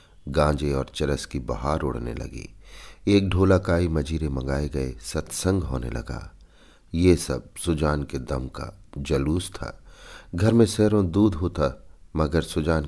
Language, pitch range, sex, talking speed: Hindi, 70-90 Hz, male, 140 wpm